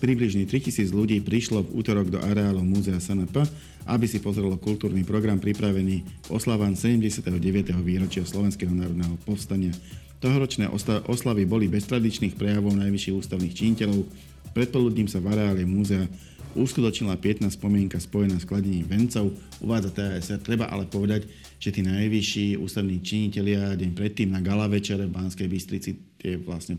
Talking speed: 140 wpm